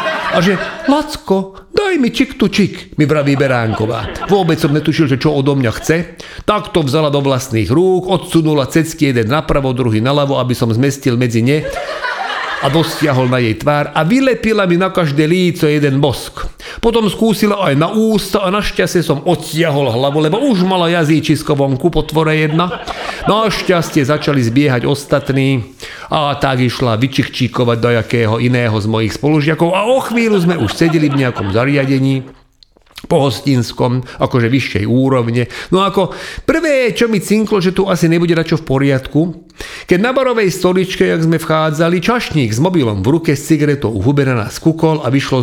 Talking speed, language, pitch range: 170 wpm, Slovak, 135-180 Hz